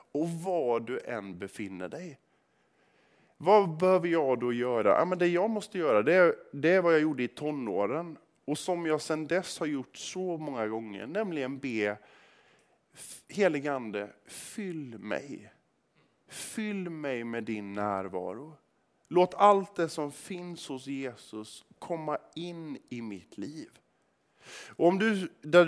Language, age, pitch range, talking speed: Swedish, 30-49, 115-170 Hz, 135 wpm